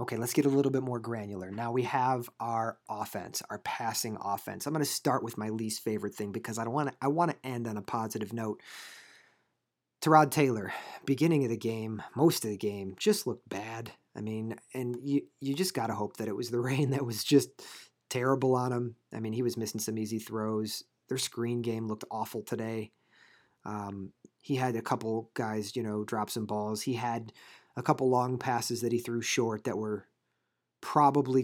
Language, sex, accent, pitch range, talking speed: English, male, American, 110-135 Hz, 205 wpm